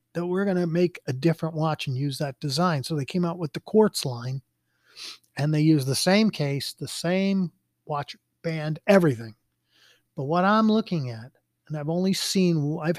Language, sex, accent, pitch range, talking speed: English, male, American, 140-175 Hz, 190 wpm